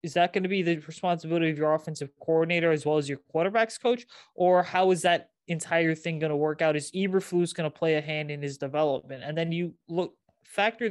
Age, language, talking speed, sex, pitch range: 20-39, English, 230 wpm, male, 150-175 Hz